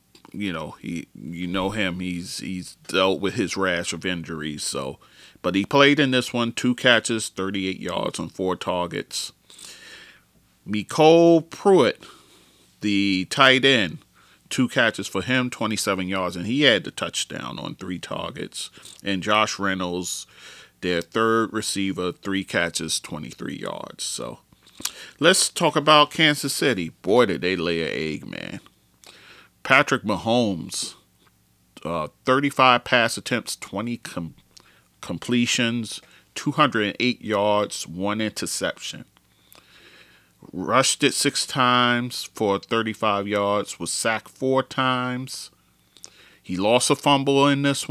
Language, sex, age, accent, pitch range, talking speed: English, male, 30-49, American, 90-130 Hz, 125 wpm